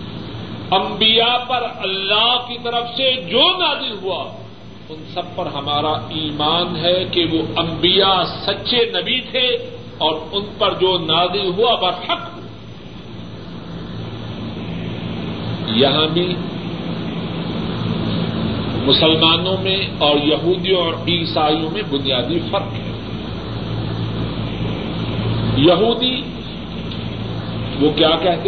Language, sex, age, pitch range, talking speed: Urdu, male, 50-69, 150-200 Hz, 95 wpm